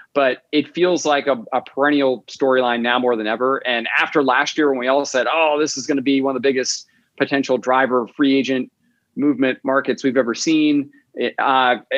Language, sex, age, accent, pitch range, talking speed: English, male, 30-49, American, 125-155 Hz, 205 wpm